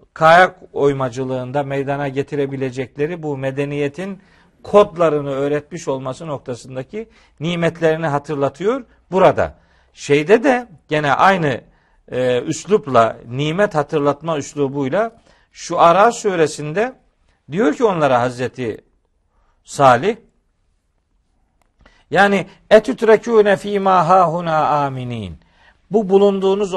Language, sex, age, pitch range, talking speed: Turkish, male, 50-69, 135-175 Hz, 80 wpm